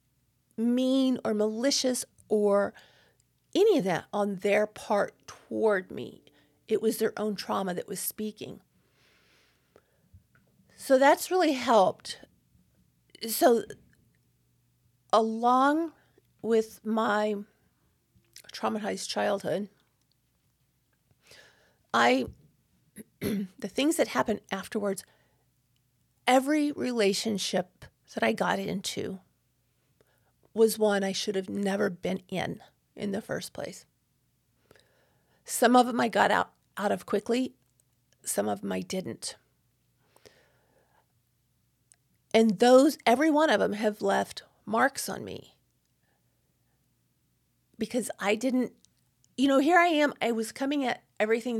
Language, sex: English, female